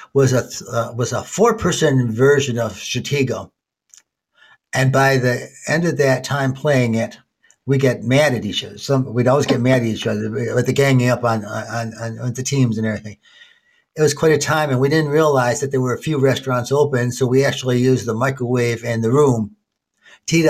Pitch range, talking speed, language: 120-150 Hz, 205 wpm, English